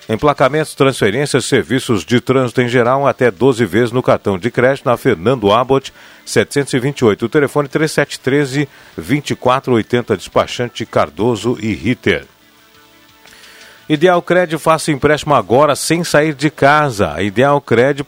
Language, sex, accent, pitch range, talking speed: Portuguese, male, Brazilian, 120-150 Hz, 115 wpm